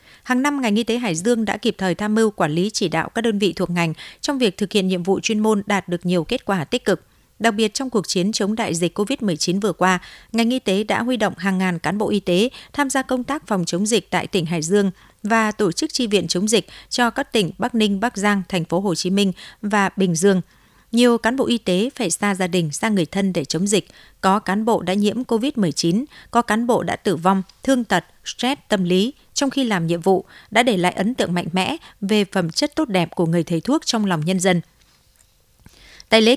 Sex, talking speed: female, 250 wpm